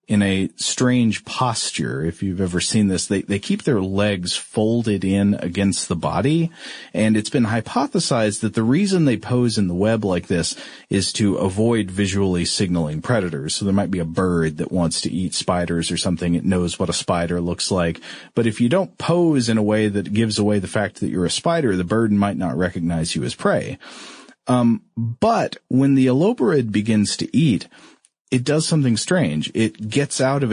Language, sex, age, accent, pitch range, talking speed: English, male, 40-59, American, 95-120 Hz, 195 wpm